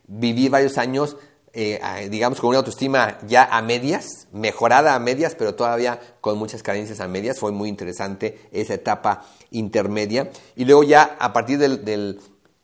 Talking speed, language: 160 wpm, Spanish